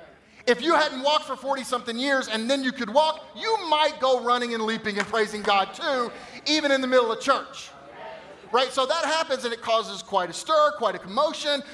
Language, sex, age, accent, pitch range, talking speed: English, male, 30-49, American, 190-255 Hz, 210 wpm